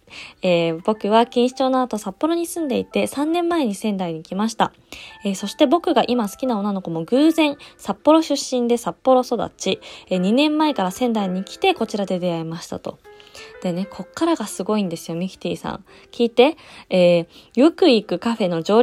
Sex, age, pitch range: female, 20-39, 195-275 Hz